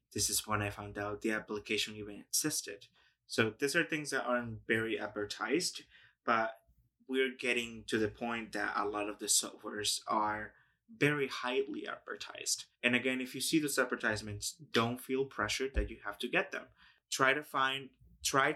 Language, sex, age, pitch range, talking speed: English, male, 20-39, 105-130 Hz, 175 wpm